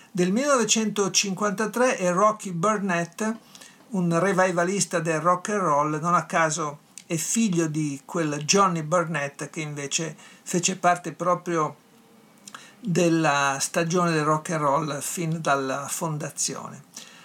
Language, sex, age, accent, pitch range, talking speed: Italian, male, 50-69, native, 150-185 Hz, 120 wpm